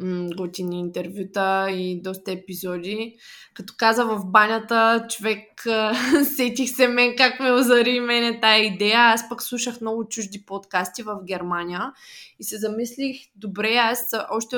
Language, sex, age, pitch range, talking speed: Bulgarian, female, 20-39, 200-240 Hz, 135 wpm